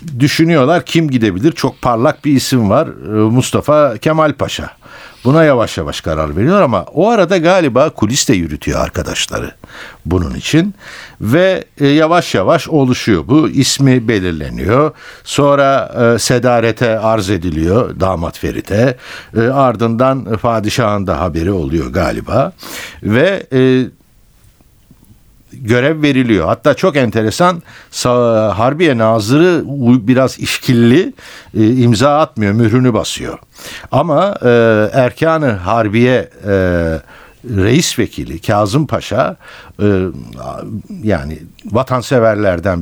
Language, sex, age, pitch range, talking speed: Turkish, male, 60-79, 105-140 Hz, 95 wpm